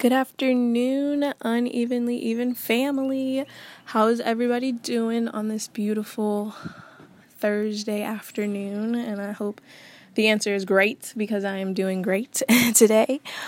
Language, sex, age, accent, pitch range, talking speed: English, female, 20-39, American, 200-235 Hz, 120 wpm